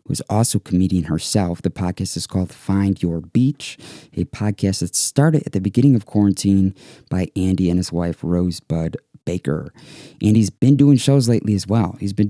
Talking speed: 185 wpm